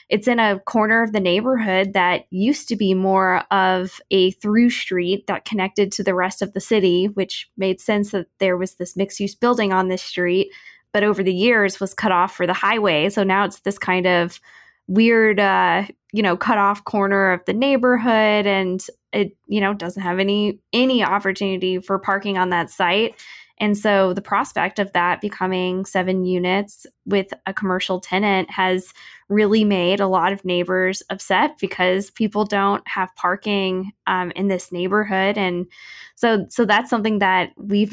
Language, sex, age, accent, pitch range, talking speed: English, female, 10-29, American, 185-210 Hz, 180 wpm